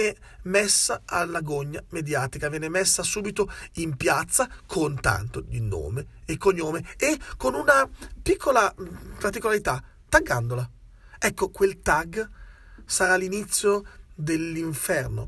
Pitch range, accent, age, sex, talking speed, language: 130-190 Hz, native, 40-59, male, 105 wpm, Italian